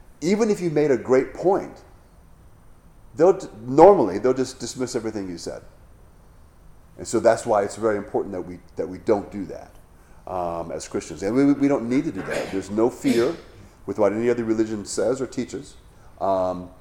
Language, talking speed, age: English, 185 wpm, 40-59